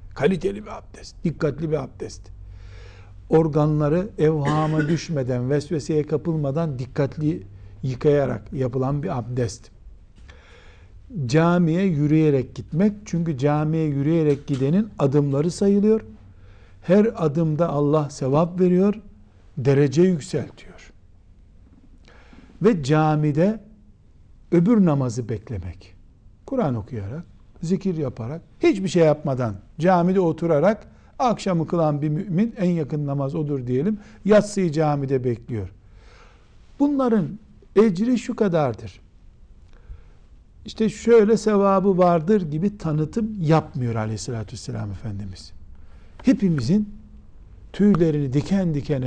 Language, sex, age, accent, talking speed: Turkish, male, 60-79, native, 95 wpm